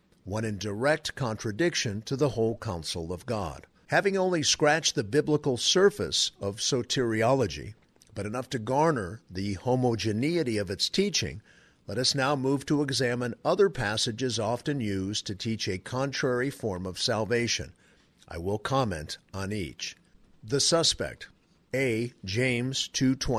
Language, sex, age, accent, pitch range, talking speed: English, male, 50-69, American, 105-145 Hz, 135 wpm